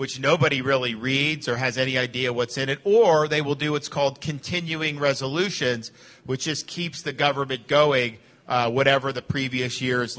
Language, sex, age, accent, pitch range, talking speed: English, male, 50-69, American, 135-175 Hz, 175 wpm